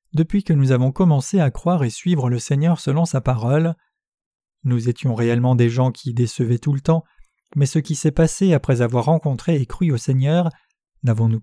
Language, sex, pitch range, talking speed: French, male, 125-165 Hz, 195 wpm